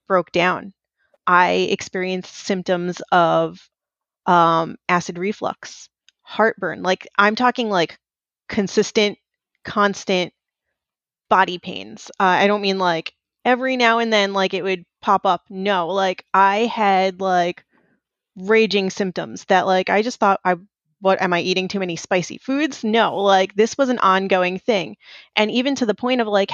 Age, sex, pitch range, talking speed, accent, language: 20-39, female, 185-225 Hz, 150 wpm, American, English